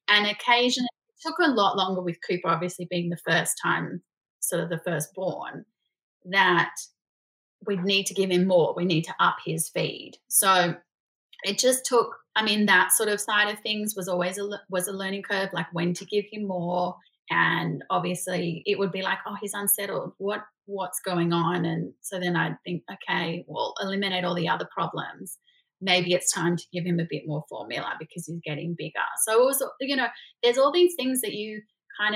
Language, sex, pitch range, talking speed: English, female, 175-215 Hz, 195 wpm